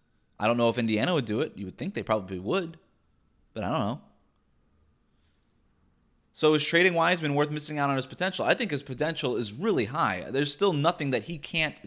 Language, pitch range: English, 105-145 Hz